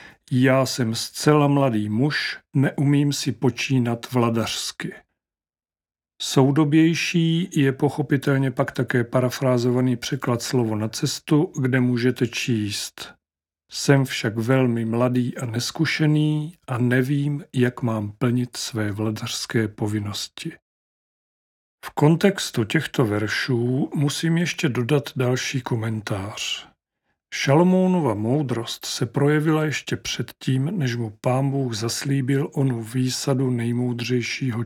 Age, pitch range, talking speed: 40-59, 115-140 Hz, 105 wpm